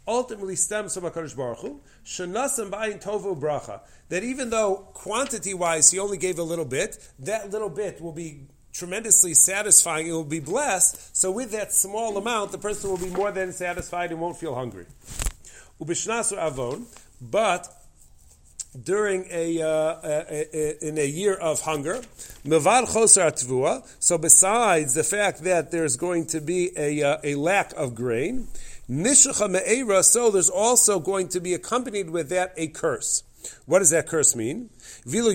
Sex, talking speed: male, 155 wpm